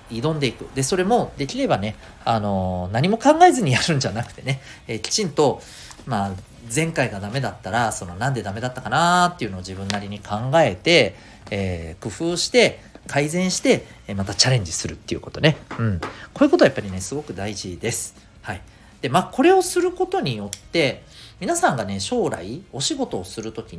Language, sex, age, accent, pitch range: Japanese, male, 40-59, native, 95-165 Hz